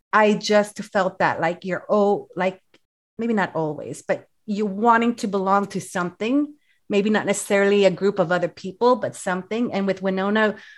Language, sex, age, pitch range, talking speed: English, female, 30-49, 185-235 Hz, 175 wpm